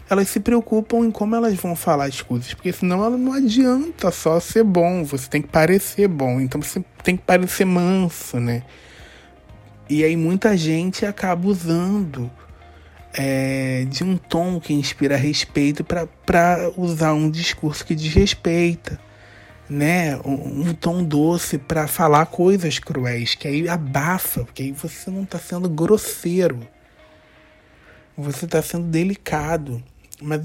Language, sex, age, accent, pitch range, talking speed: Portuguese, male, 20-39, Brazilian, 135-175 Hz, 140 wpm